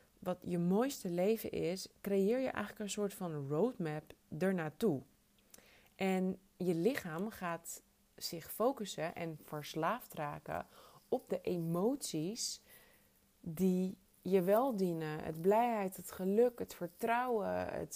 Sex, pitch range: female, 180-220 Hz